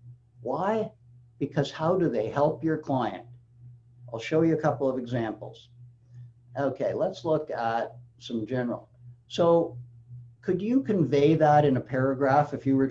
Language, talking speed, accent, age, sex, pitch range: English, 150 wpm, American, 60-79, male, 120-150 Hz